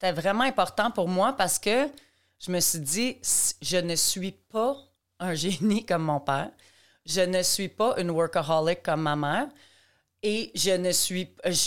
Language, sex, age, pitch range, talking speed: French, female, 30-49, 165-215 Hz, 175 wpm